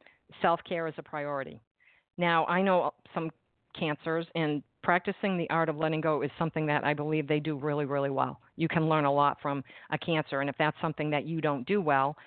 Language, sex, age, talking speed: English, female, 50-69, 210 wpm